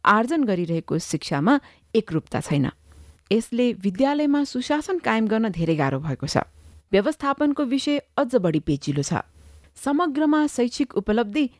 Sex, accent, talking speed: female, Indian, 120 wpm